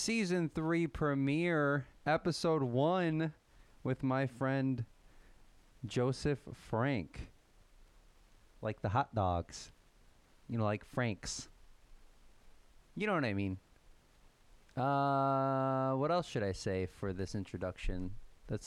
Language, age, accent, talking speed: English, 30-49, American, 105 wpm